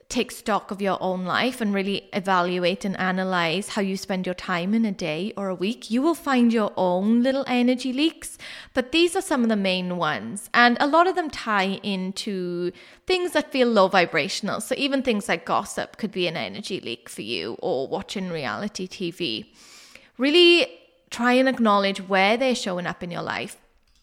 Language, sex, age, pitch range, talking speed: English, female, 20-39, 190-255 Hz, 190 wpm